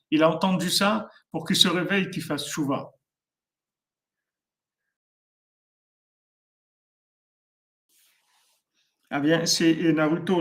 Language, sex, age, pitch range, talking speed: French, male, 50-69, 145-165 Hz, 90 wpm